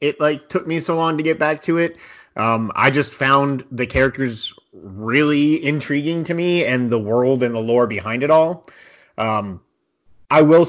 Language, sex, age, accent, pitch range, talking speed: English, male, 30-49, American, 120-150 Hz, 185 wpm